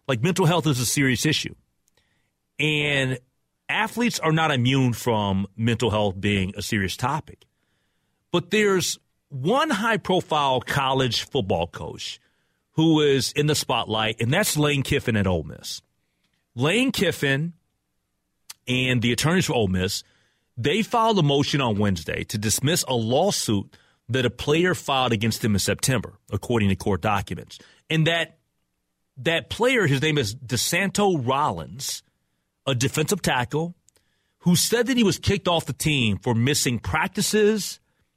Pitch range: 110-160 Hz